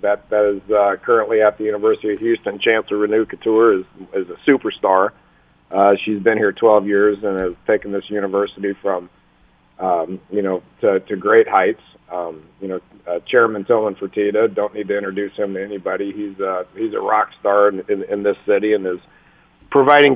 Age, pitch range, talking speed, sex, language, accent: 40-59, 100-120 Hz, 190 wpm, male, English, American